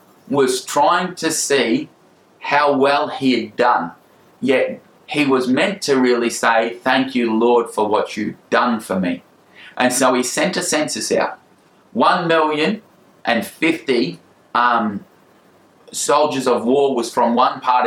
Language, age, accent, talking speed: English, 20-39, Australian, 150 wpm